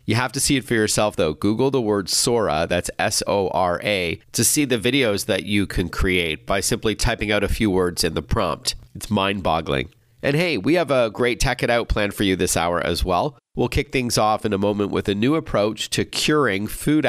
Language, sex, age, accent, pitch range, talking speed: English, male, 40-59, American, 90-120 Hz, 225 wpm